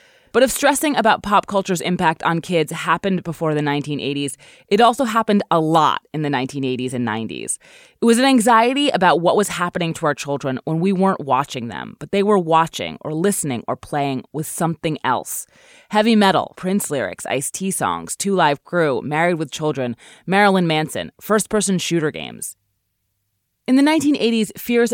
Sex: female